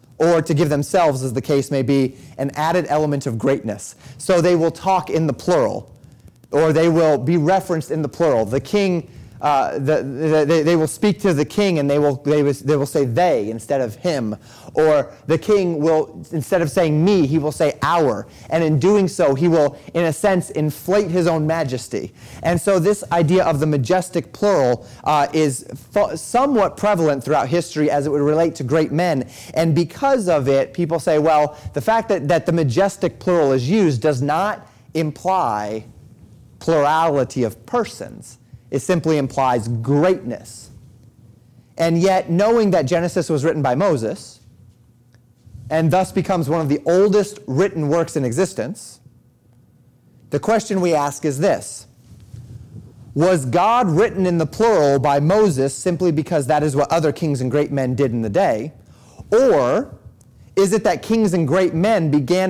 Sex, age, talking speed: male, 30-49, 175 wpm